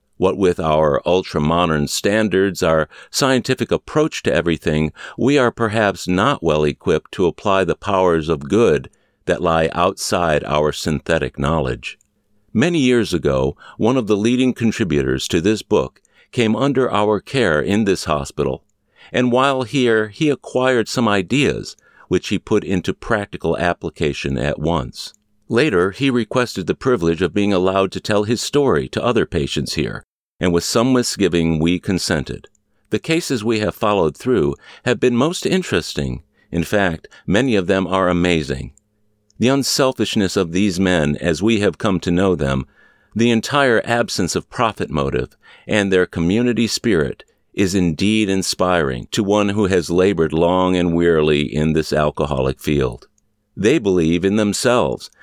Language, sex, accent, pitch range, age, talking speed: English, male, American, 80-110 Hz, 60-79, 150 wpm